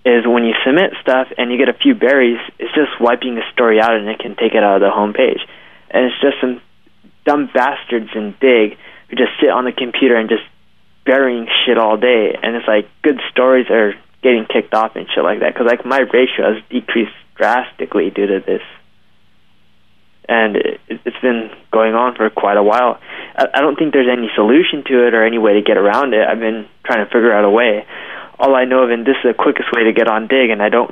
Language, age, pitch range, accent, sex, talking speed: English, 20-39, 110-130 Hz, American, male, 230 wpm